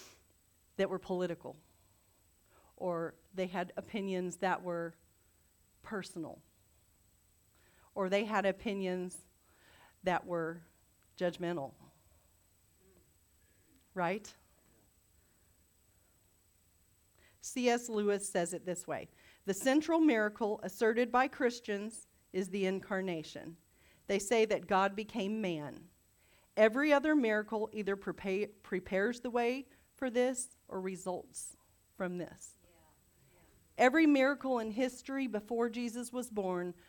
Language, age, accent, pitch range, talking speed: English, 40-59, American, 160-240 Hz, 100 wpm